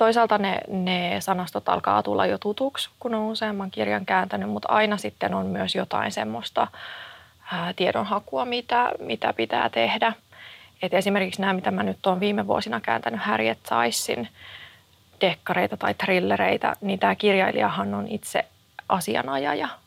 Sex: female